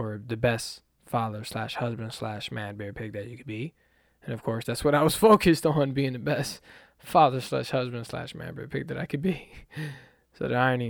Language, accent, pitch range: English, American, 110-145 Hz